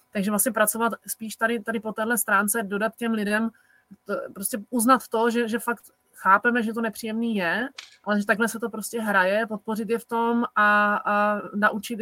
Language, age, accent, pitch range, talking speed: Czech, 30-49, native, 205-235 Hz, 190 wpm